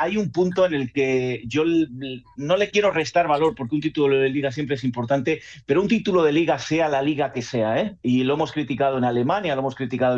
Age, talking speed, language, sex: 40-59, 235 wpm, Spanish, male